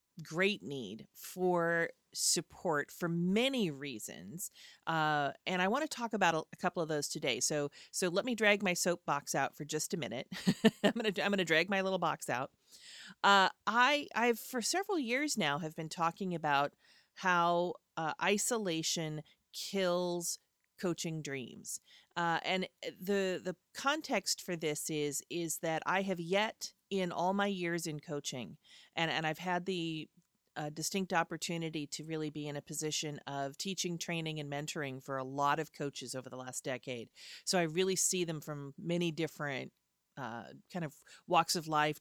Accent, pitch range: American, 150-190 Hz